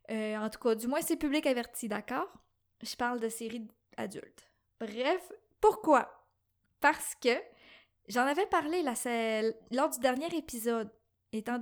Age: 20-39